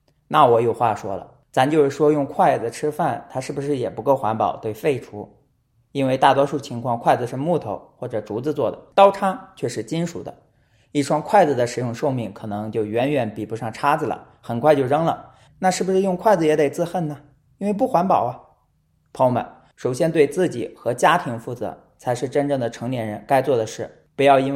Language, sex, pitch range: Chinese, male, 115-145 Hz